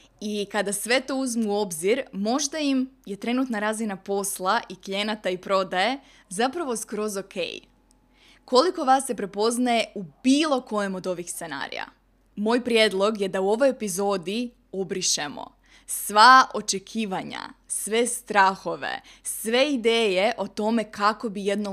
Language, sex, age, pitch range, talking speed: Croatian, female, 20-39, 195-235 Hz, 135 wpm